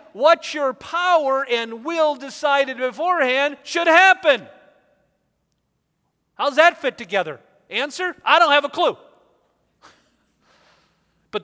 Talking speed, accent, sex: 105 wpm, American, male